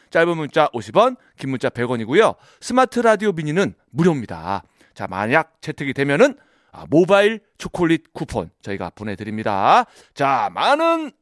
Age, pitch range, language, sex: 30-49, 135-215 Hz, Korean, male